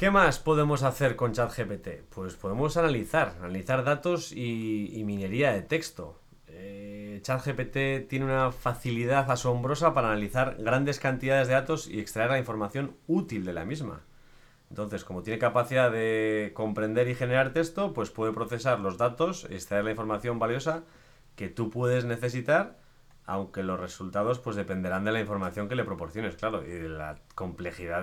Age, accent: 30-49, Spanish